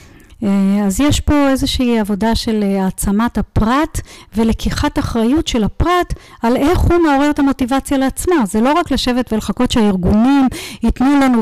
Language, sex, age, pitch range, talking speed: Hebrew, female, 40-59, 210-270 Hz, 140 wpm